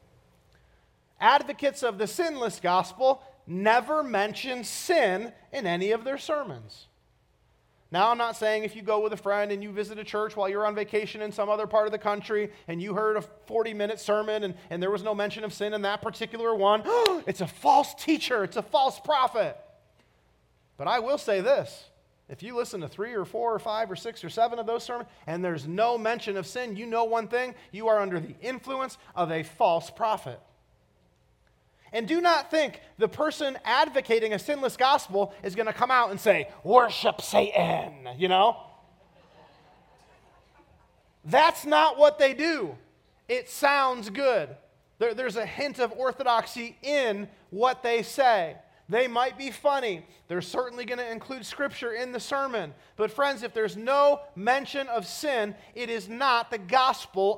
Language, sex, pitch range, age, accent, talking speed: English, male, 205-270 Hz, 40-59, American, 175 wpm